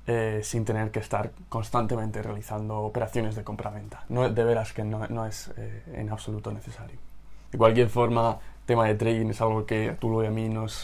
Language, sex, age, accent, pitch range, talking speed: Spanish, male, 20-39, Spanish, 110-120 Hz, 200 wpm